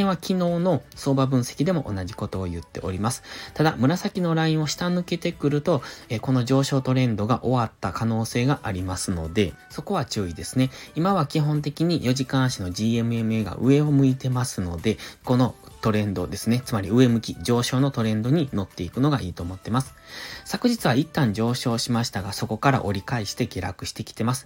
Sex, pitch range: male, 105-145 Hz